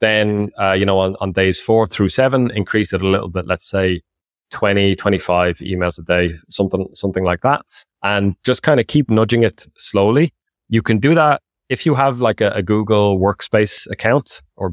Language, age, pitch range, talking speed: English, 20-39, 95-110 Hz, 195 wpm